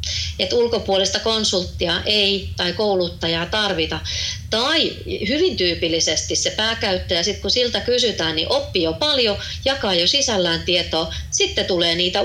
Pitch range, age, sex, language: 155-200 Hz, 30-49, female, Finnish